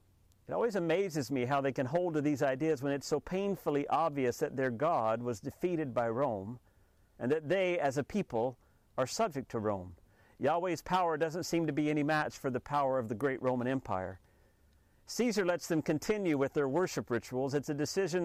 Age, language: 50-69, English